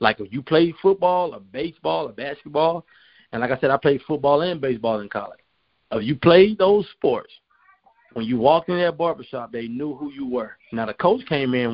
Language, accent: English, American